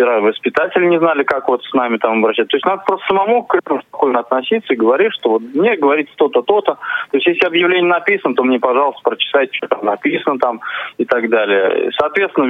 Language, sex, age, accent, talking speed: Russian, male, 20-39, native, 205 wpm